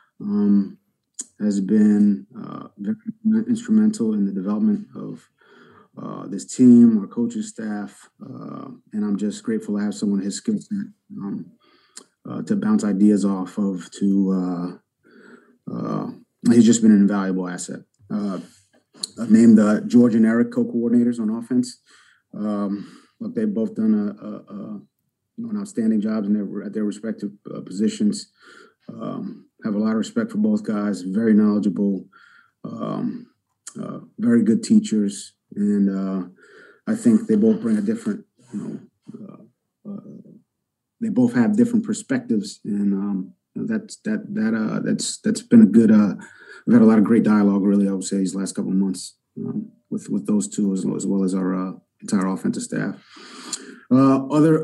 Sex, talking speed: male, 165 wpm